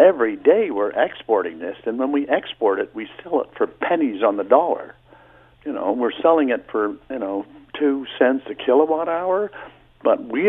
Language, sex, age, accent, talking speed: English, male, 60-79, American, 190 wpm